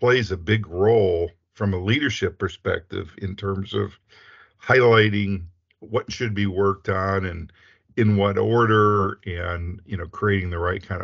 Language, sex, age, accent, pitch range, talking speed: English, male, 50-69, American, 90-105 Hz, 150 wpm